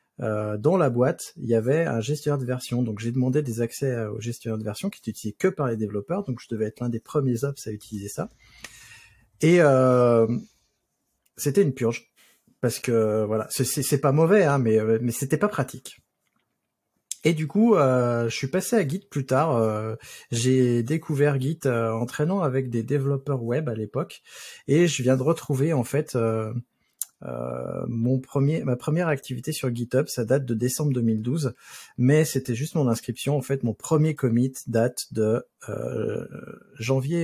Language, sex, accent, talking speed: French, male, French, 185 wpm